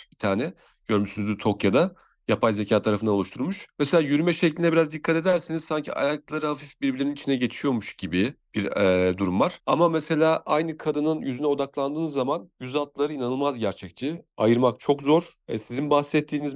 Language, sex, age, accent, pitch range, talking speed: Turkish, male, 40-59, native, 110-155 Hz, 150 wpm